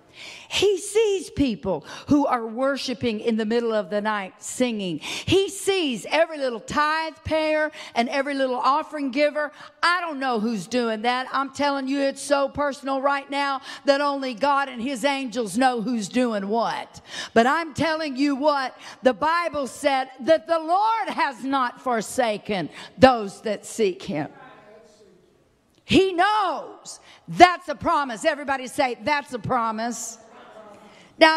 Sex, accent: female, American